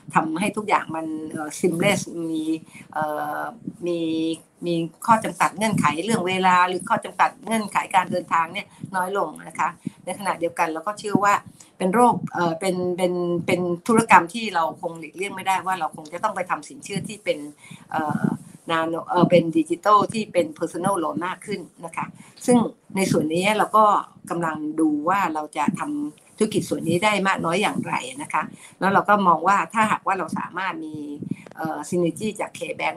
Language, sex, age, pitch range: Thai, female, 60-79, 165-205 Hz